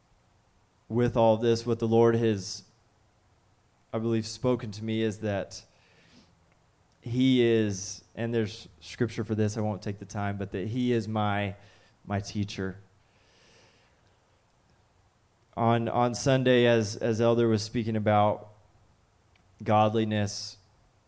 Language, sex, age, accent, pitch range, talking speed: English, male, 20-39, American, 105-125 Hz, 120 wpm